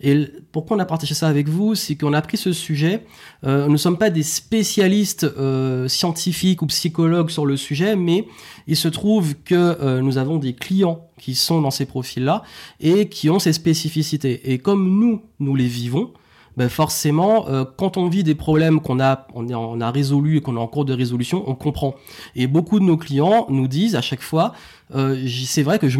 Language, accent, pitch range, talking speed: French, French, 140-175 Hz, 210 wpm